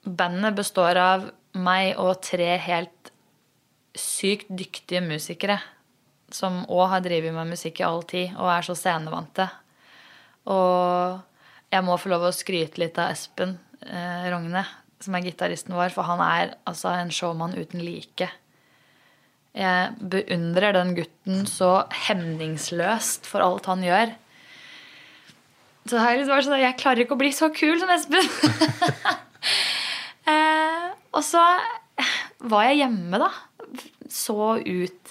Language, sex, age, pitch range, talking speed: English, female, 20-39, 180-265 Hz, 135 wpm